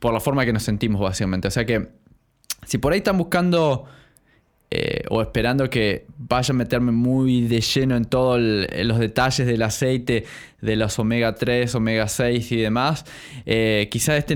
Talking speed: 175 wpm